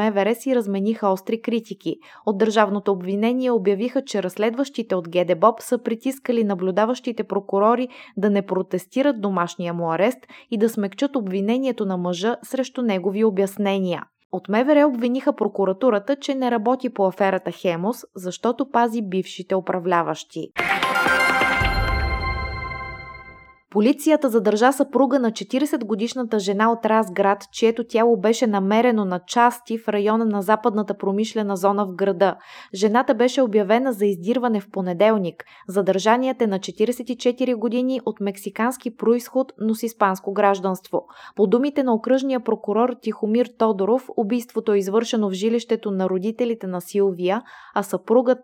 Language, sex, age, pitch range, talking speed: Bulgarian, female, 20-39, 195-240 Hz, 130 wpm